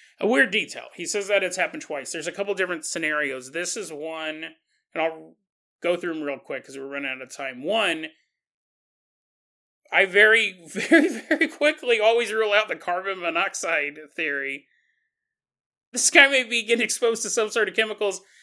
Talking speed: 175 wpm